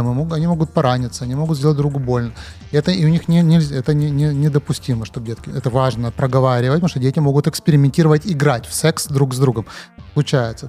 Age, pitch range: 30-49, 135-190 Hz